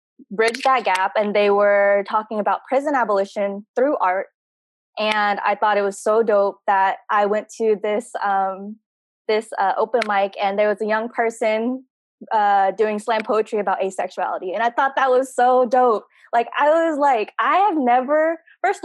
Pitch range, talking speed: 205-240 Hz, 180 wpm